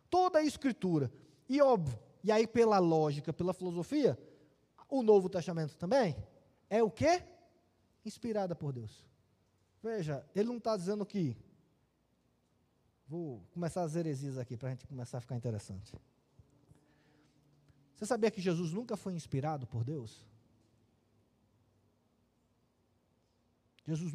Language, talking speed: Portuguese, 120 wpm